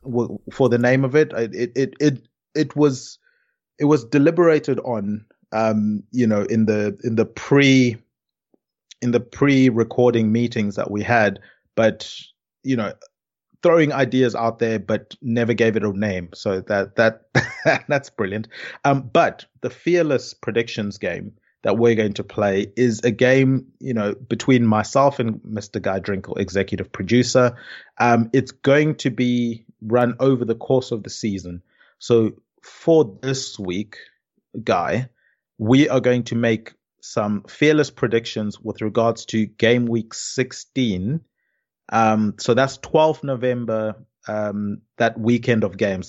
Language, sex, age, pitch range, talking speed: English, male, 30-49, 110-130 Hz, 150 wpm